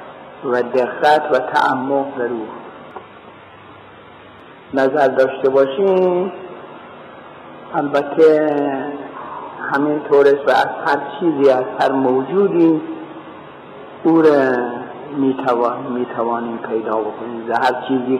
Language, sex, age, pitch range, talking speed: Persian, male, 50-69, 130-170 Hz, 95 wpm